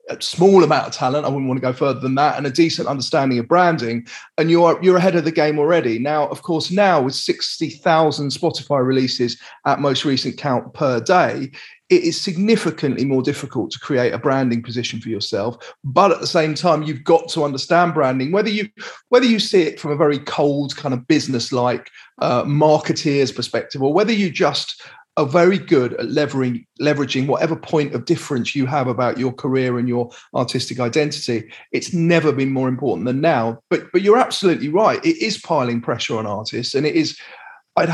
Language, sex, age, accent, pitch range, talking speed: English, male, 30-49, British, 130-165 Hz, 200 wpm